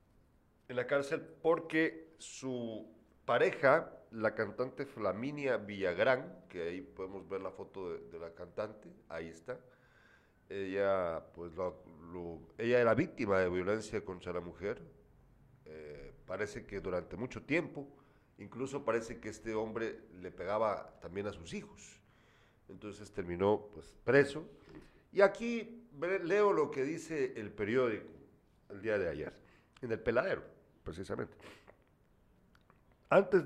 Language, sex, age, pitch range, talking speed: Spanish, male, 50-69, 100-160 Hz, 130 wpm